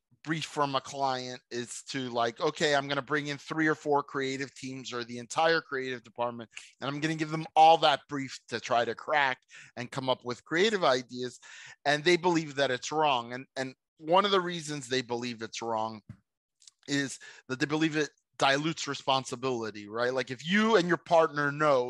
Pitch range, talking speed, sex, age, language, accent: 130-160 Hz, 200 wpm, male, 30-49, English, American